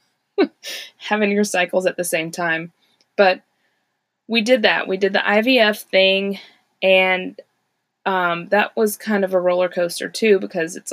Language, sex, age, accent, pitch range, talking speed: English, female, 20-39, American, 175-220 Hz, 155 wpm